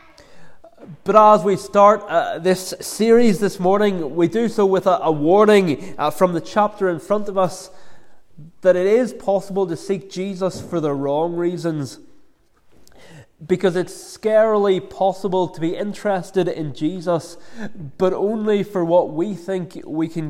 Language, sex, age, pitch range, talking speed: English, male, 20-39, 150-190 Hz, 155 wpm